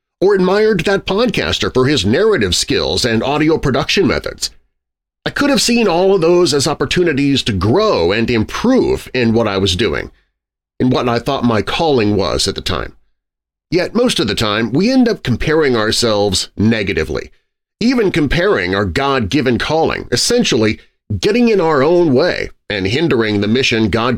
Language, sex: English, male